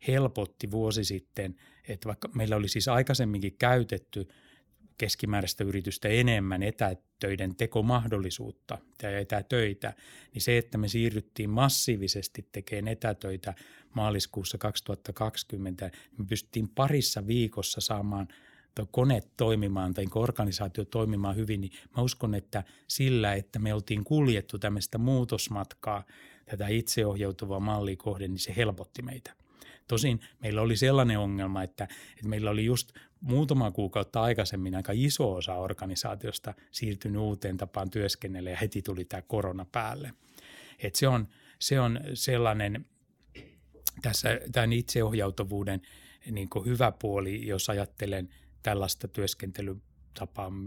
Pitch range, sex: 100-115 Hz, male